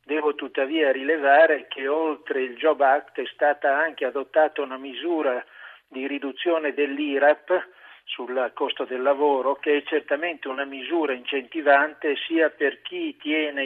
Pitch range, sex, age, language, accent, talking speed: 135-160 Hz, male, 50-69, Italian, native, 135 wpm